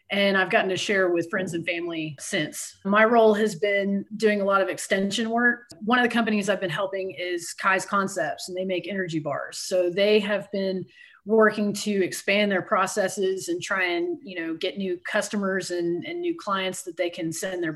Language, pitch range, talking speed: English, 175-200 Hz, 205 wpm